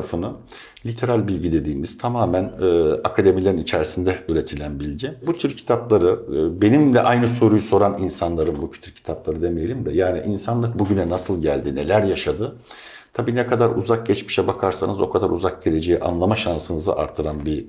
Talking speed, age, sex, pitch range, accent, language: 155 wpm, 60-79, male, 90-120 Hz, native, Turkish